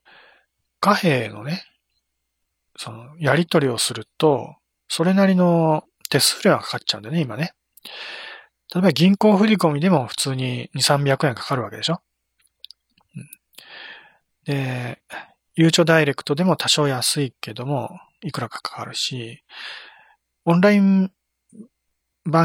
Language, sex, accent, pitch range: Japanese, male, native, 125-170 Hz